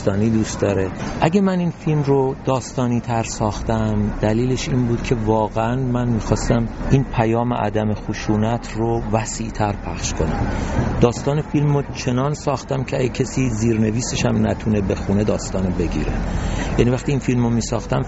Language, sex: Persian, male